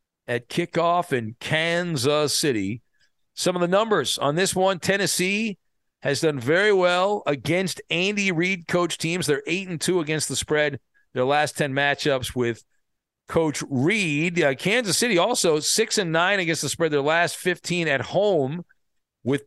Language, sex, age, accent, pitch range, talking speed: English, male, 50-69, American, 145-180 Hz, 160 wpm